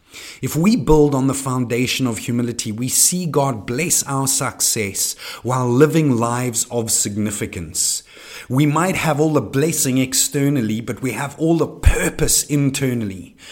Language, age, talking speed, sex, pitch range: English, 30-49, 145 wpm, male, 105-135 Hz